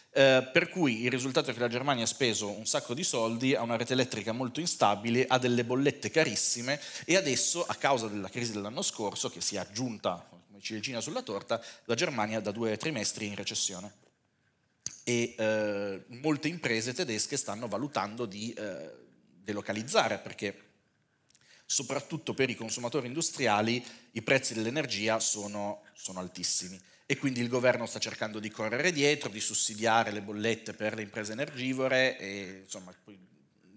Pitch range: 105-130 Hz